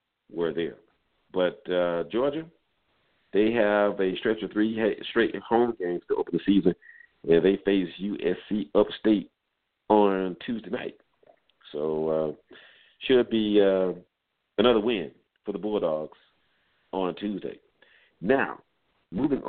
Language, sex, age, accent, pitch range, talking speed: English, male, 50-69, American, 90-125 Hz, 125 wpm